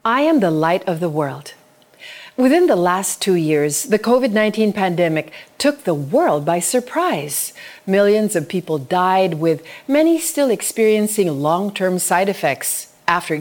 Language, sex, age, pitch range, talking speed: Filipino, female, 40-59, 165-270 Hz, 145 wpm